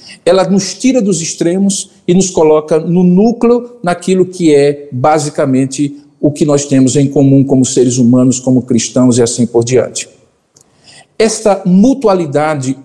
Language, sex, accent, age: Portuguese, male, Brazilian, 50-69